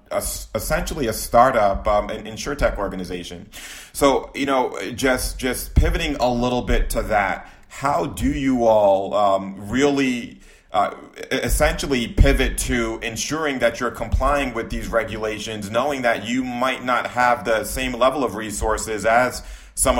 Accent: American